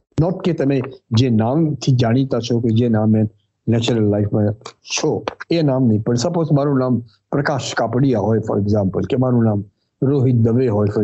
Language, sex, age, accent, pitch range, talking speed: English, male, 50-69, Indian, 110-145 Hz, 160 wpm